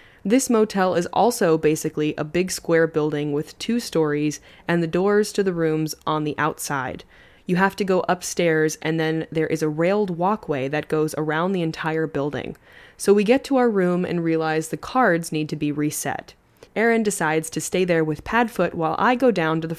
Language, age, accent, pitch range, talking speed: English, 20-39, American, 155-200 Hz, 200 wpm